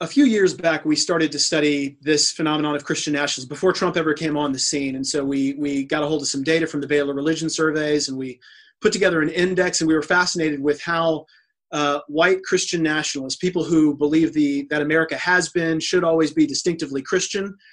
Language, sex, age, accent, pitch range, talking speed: English, male, 30-49, American, 145-170 Hz, 215 wpm